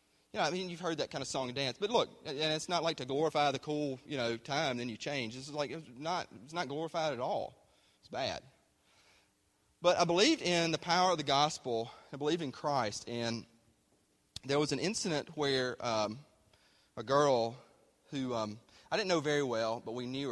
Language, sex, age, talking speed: English, male, 30-49, 210 wpm